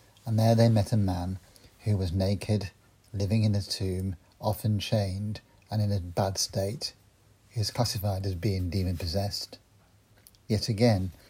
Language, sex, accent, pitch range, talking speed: English, male, British, 100-115 Hz, 155 wpm